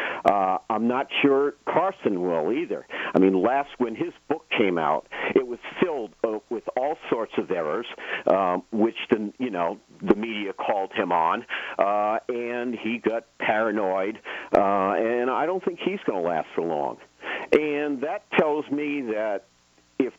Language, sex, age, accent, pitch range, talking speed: English, male, 50-69, American, 100-130 Hz, 160 wpm